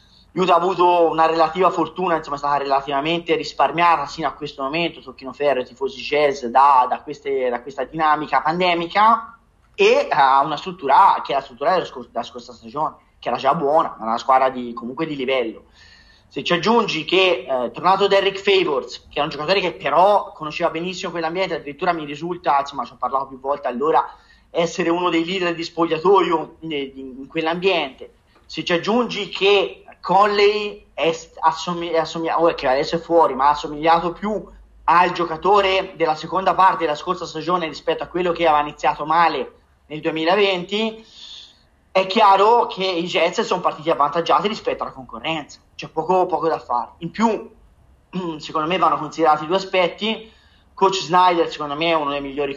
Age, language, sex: 30-49, Italian, male